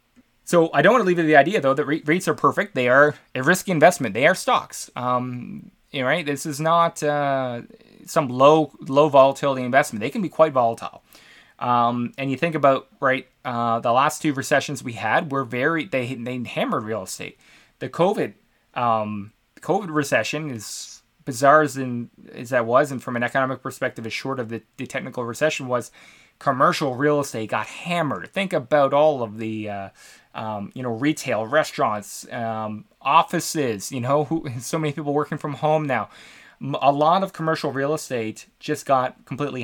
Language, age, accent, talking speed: English, 20-39, American, 185 wpm